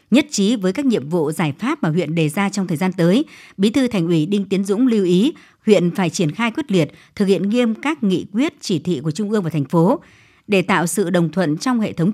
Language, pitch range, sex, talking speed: Vietnamese, 170-225 Hz, male, 260 wpm